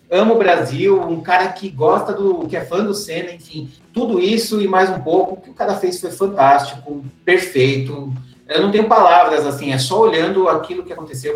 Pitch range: 155-210 Hz